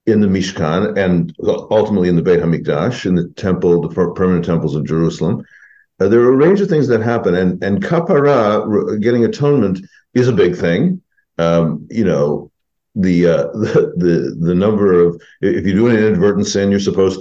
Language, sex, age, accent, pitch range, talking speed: English, male, 50-69, American, 90-125 Hz, 185 wpm